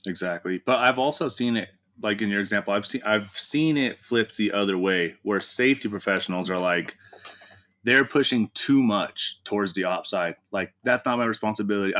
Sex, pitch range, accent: male, 95-110 Hz, American